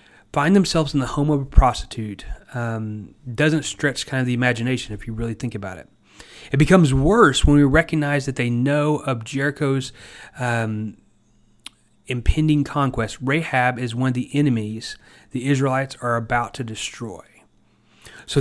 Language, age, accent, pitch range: English, 30-49, American, 115-150 Hz